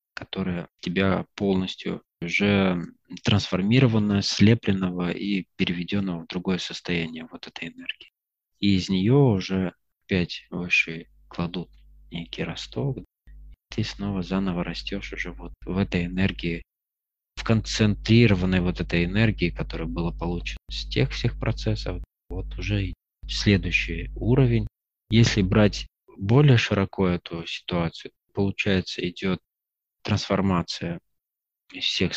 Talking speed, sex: 110 wpm, male